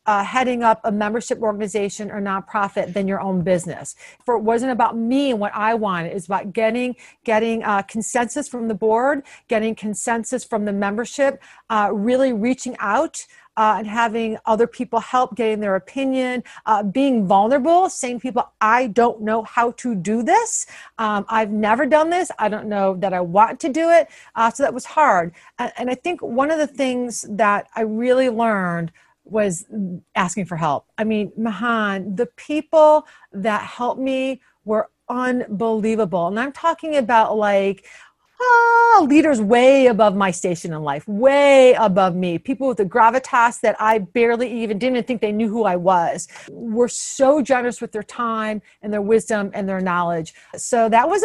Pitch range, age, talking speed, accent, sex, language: 210-255 Hz, 40-59, 180 wpm, American, female, English